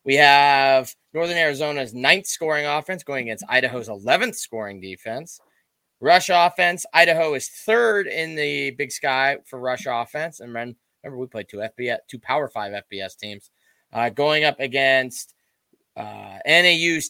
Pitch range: 115-165 Hz